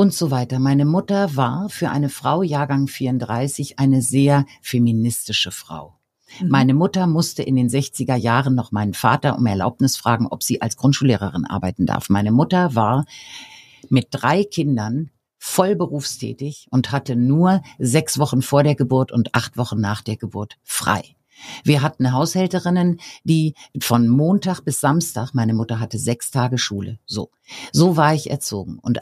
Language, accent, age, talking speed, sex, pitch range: German, German, 50-69, 155 wpm, female, 125-170 Hz